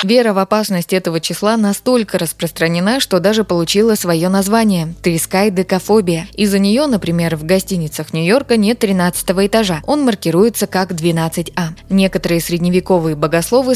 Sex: female